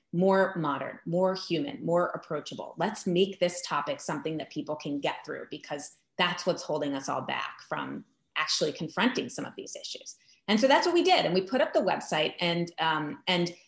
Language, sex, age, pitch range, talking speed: English, female, 30-49, 145-180 Hz, 200 wpm